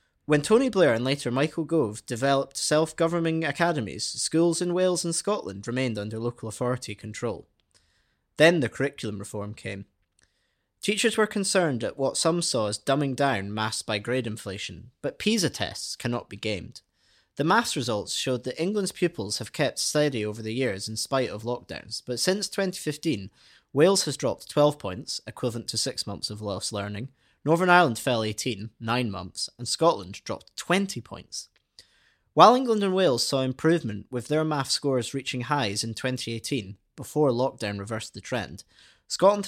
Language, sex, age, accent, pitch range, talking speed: English, male, 20-39, British, 110-155 Hz, 165 wpm